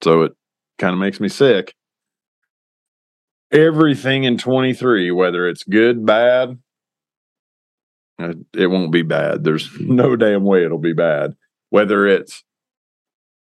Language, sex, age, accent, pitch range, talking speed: English, male, 40-59, American, 100-140 Hz, 120 wpm